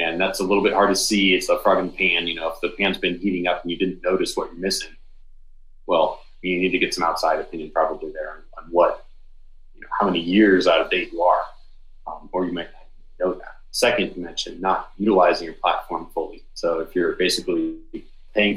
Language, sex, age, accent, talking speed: English, male, 30-49, American, 225 wpm